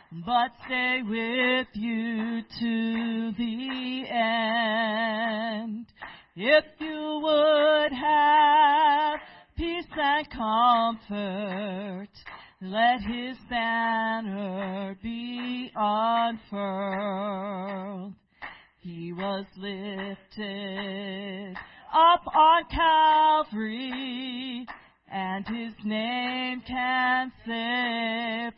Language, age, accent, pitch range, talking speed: English, 40-59, American, 200-255 Hz, 65 wpm